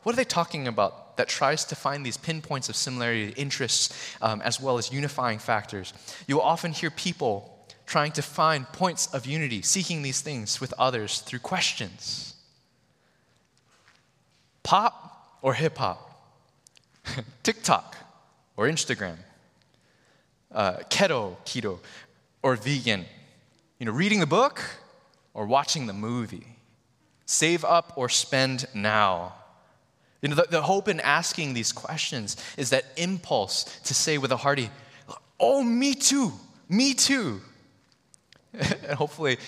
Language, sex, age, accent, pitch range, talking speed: English, male, 20-39, American, 125-170 Hz, 130 wpm